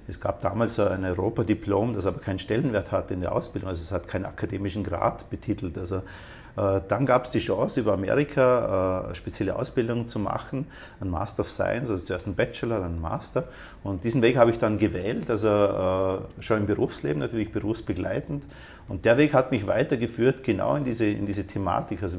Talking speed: 195 wpm